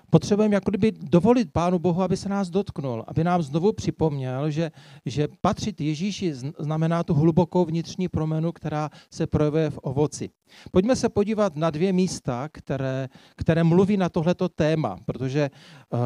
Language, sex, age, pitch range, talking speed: Czech, male, 40-59, 140-180 Hz, 150 wpm